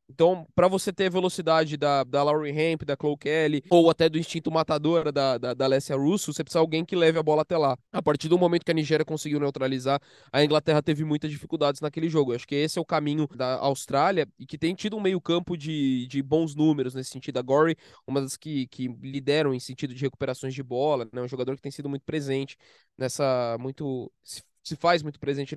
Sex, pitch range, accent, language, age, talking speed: male, 140-175 Hz, Brazilian, Portuguese, 20-39, 230 wpm